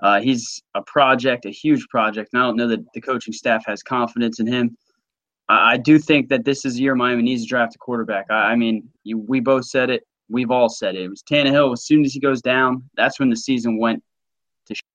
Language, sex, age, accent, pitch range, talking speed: English, male, 20-39, American, 115-135 Hz, 240 wpm